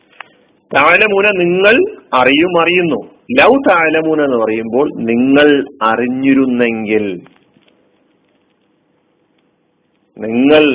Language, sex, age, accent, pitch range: Malayalam, male, 40-59, native, 120-165 Hz